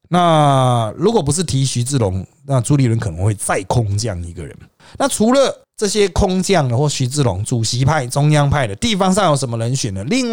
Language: Chinese